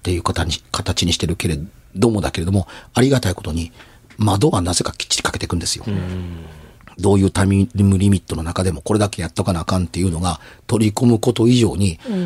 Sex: male